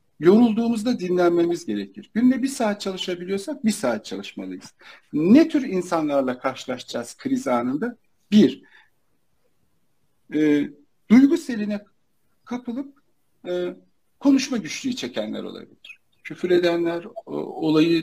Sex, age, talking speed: male, 60-79, 95 wpm